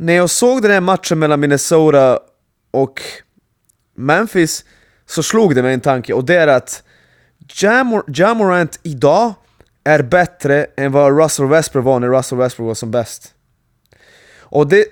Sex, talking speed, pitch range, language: male, 150 wpm, 130-170 Hz, Swedish